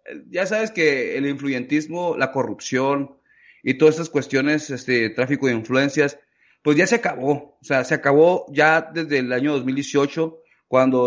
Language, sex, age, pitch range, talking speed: Spanish, male, 30-49, 130-170 Hz, 155 wpm